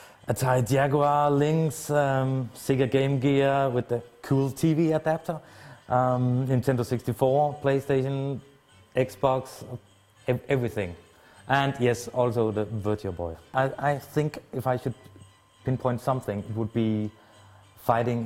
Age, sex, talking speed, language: 30-49, male, 125 wpm, English